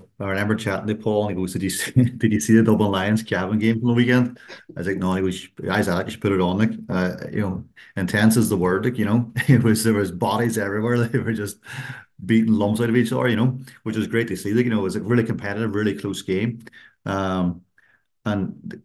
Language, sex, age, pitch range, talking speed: English, male, 30-49, 95-115 Hz, 255 wpm